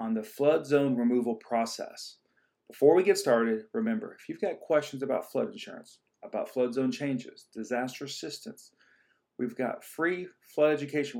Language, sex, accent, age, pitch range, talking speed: English, male, American, 40-59, 115-145 Hz, 155 wpm